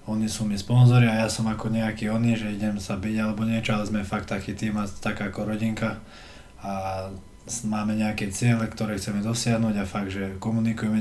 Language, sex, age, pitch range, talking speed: Slovak, male, 20-39, 105-115 Hz, 195 wpm